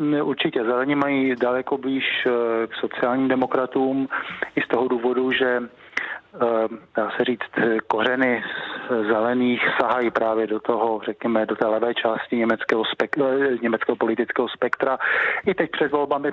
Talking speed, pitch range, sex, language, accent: 130 wpm, 115-130 Hz, male, Czech, native